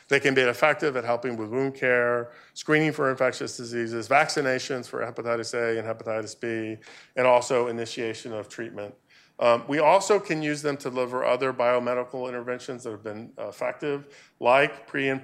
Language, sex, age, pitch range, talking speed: English, male, 40-59, 115-145 Hz, 175 wpm